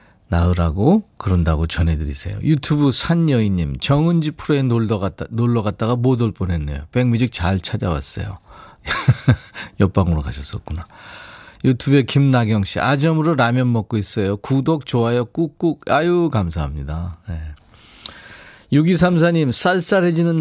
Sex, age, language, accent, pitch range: male, 40-59, Korean, native, 95-145 Hz